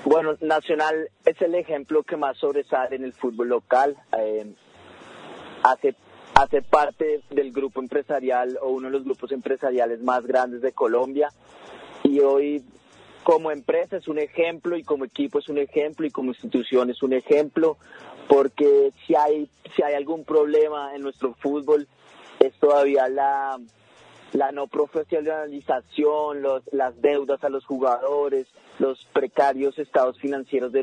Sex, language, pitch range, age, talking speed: male, Portuguese, 125-150 Hz, 30-49, 145 wpm